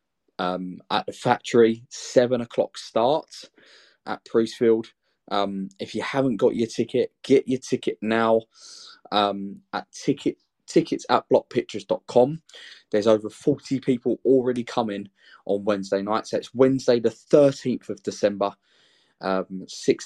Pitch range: 95-115 Hz